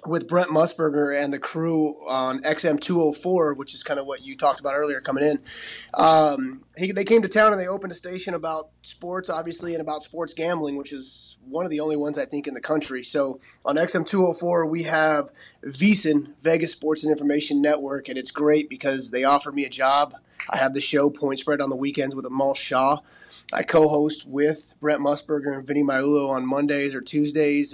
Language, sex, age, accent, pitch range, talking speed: English, male, 30-49, American, 140-170 Hz, 205 wpm